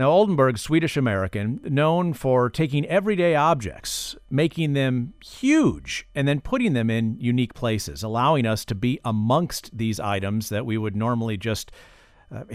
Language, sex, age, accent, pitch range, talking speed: English, male, 50-69, American, 110-155 Hz, 150 wpm